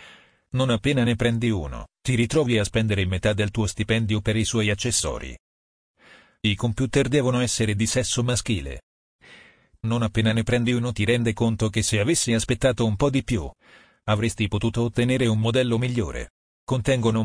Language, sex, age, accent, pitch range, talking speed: Italian, male, 40-59, native, 105-120 Hz, 165 wpm